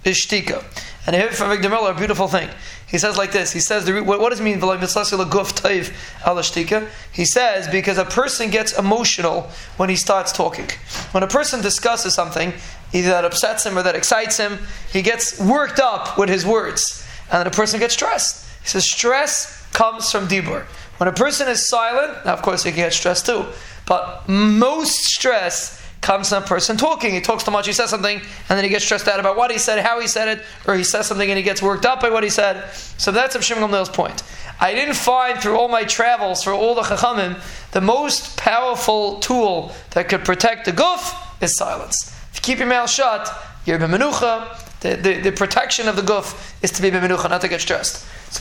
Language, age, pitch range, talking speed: English, 20-39, 190-230 Hz, 210 wpm